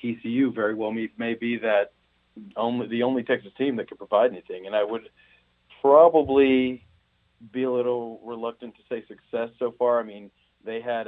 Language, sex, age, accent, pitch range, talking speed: English, male, 40-59, American, 105-120 Hz, 180 wpm